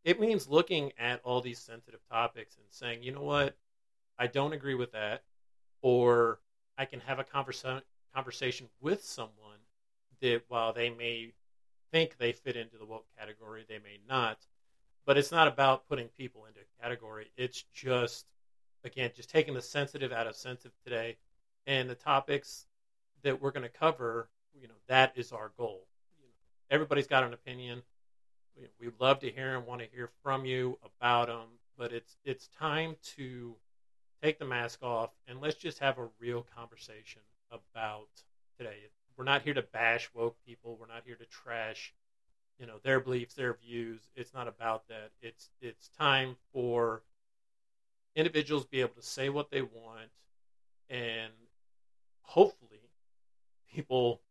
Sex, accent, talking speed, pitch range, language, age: male, American, 160 wpm, 115-130 Hz, English, 40-59